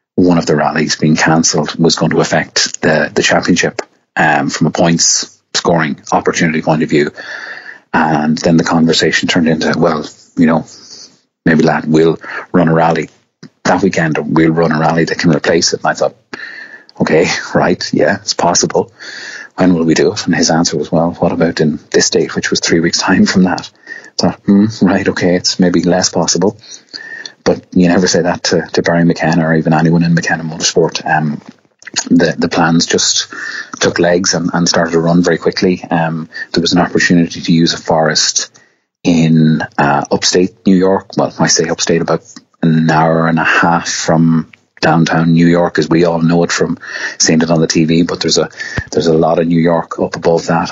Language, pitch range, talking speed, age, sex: English, 80-85 Hz, 195 wpm, 30-49, male